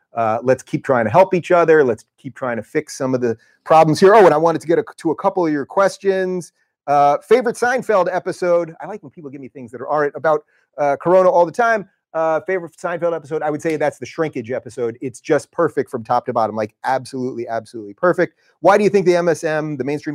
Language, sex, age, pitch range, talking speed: English, male, 30-49, 125-175 Hz, 235 wpm